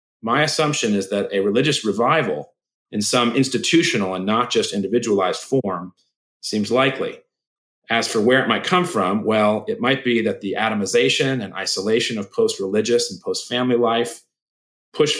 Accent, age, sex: American, 40-59, male